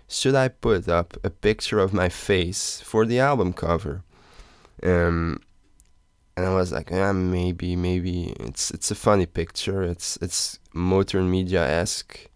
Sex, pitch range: male, 85-100 Hz